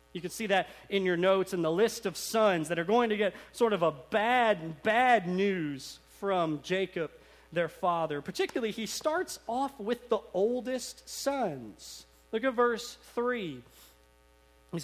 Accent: American